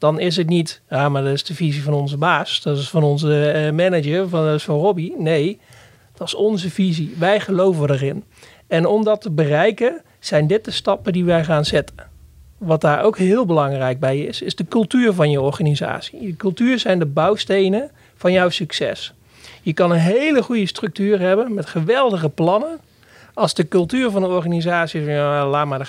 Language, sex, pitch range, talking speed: Dutch, male, 150-195 Hz, 195 wpm